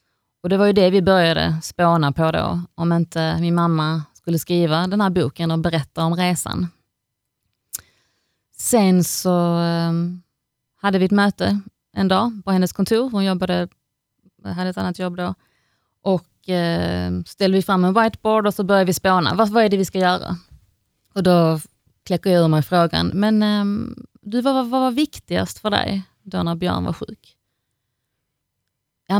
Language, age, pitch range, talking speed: Swedish, 30-49, 145-195 Hz, 160 wpm